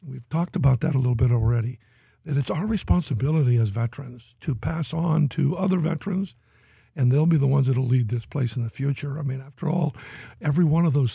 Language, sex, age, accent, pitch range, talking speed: English, male, 60-79, American, 125-155 Hz, 220 wpm